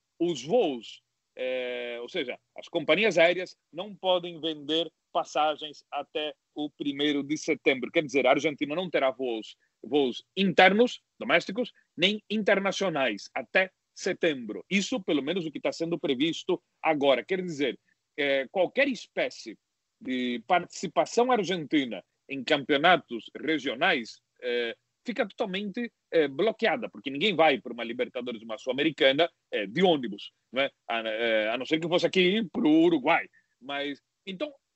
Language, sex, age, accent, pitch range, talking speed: Portuguese, male, 40-59, Brazilian, 145-210 Hz, 140 wpm